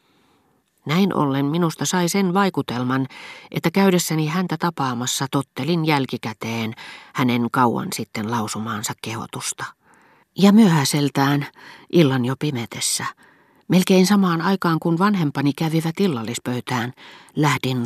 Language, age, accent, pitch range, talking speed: Finnish, 40-59, native, 125-165 Hz, 100 wpm